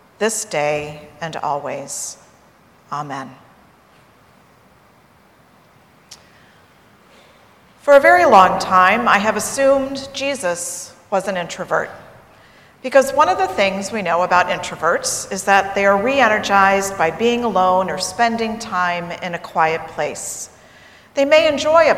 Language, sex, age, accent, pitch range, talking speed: English, female, 40-59, American, 175-240 Hz, 125 wpm